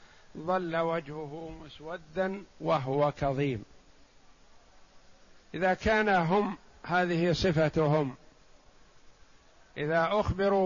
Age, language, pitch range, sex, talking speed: 50-69, Arabic, 150-185 Hz, male, 70 wpm